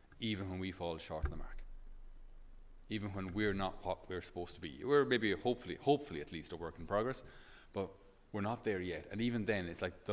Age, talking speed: 30-49, 225 wpm